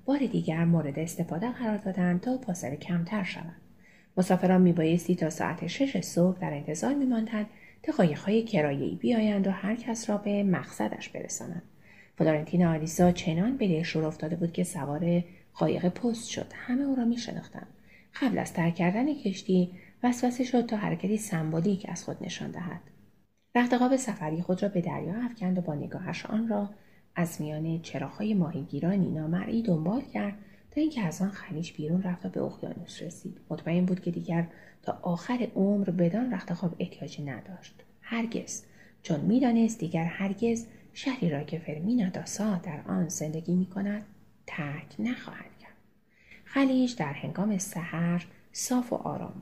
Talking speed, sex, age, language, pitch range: 155 wpm, female, 30-49, Persian, 170-215 Hz